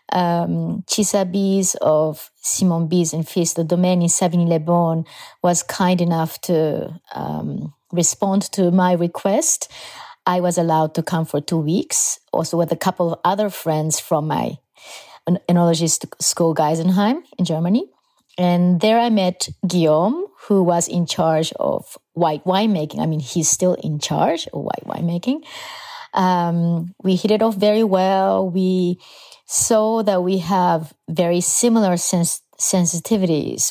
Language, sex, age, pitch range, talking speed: English, female, 30-49, 165-195 Hz, 145 wpm